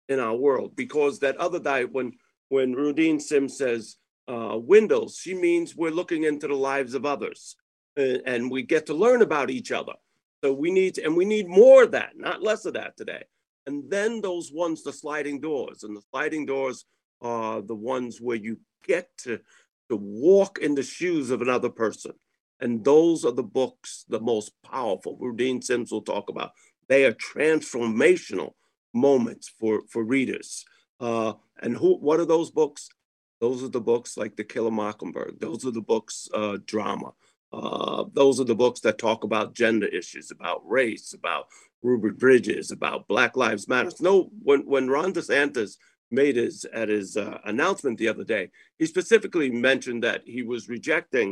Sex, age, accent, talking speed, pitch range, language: male, 50-69, American, 180 wpm, 120-170 Hz, English